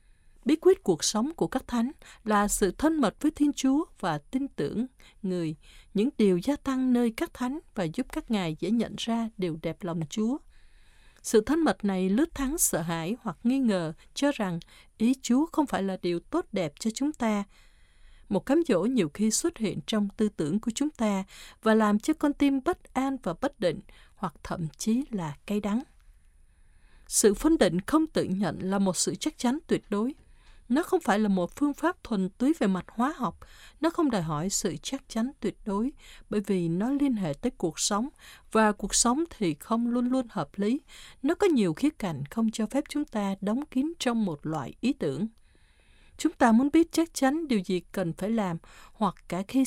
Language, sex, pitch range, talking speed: Vietnamese, female, 190-275 Hz, 210 wpm